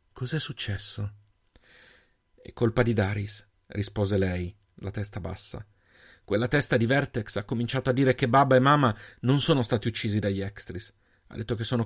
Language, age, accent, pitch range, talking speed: Italian, 40-59, native, 100-125 Hz, 165 wpm